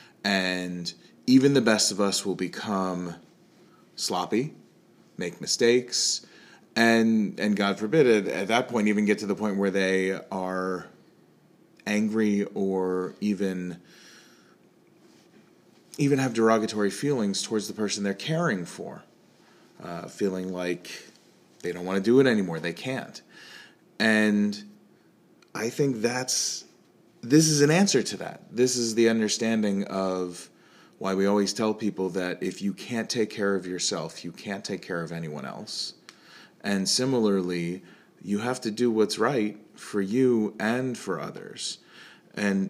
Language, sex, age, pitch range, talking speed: English, male, 30-49, 95-115 Hz, 140 wpm